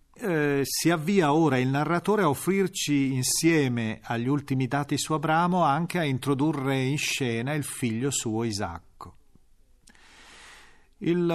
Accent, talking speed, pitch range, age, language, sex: native, 125 wpm, 115-150 Hz, 40-59, Italian, male